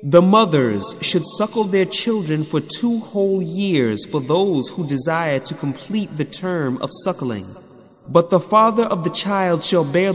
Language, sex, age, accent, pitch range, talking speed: English, male, 30-49, American, 140-185 Hz, 165 wpm